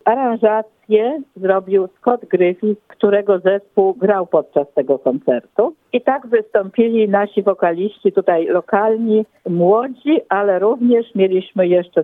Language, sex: Polish, female